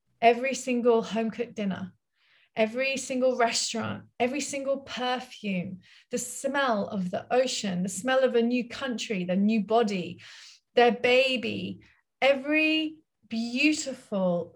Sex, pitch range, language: female, 205-250 Hz, English